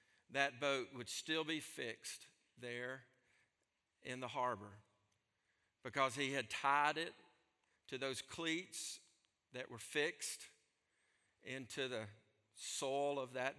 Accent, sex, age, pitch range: American, male, 50-69, 120-145 Hz